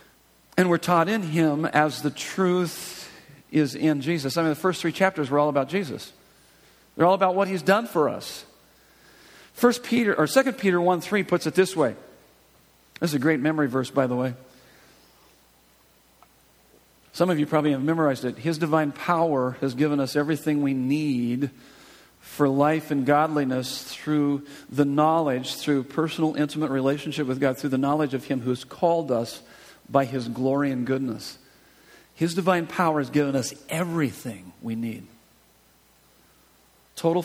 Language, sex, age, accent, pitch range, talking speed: English, male, 50-69, American, 135-165 Hz, 160 wpm